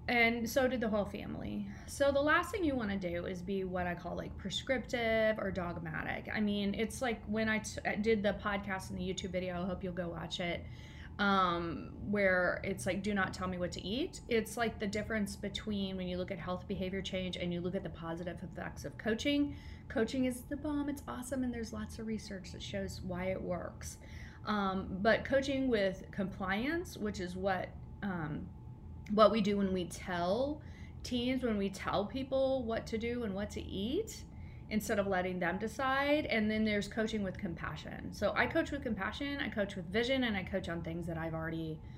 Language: English